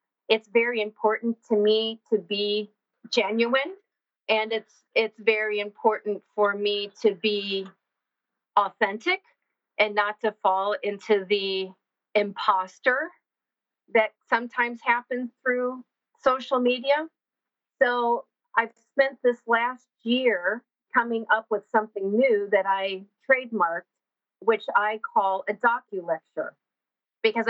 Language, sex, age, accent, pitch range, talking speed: English, female, 40-59, American, 205-245 Hz, 110 wpm